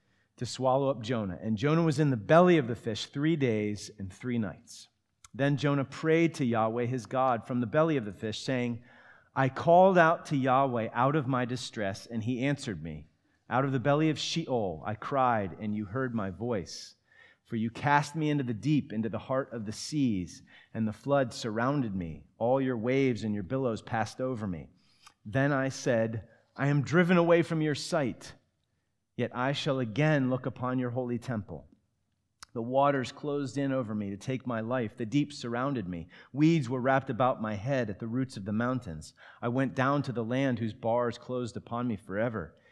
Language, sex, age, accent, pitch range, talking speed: English, male, 40-59, American, 115-140 Hz, 200 wpm